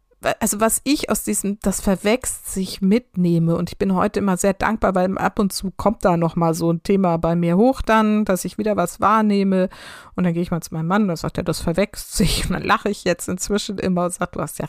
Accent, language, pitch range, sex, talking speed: German, German, 170-200 Hz, female, 250 wpm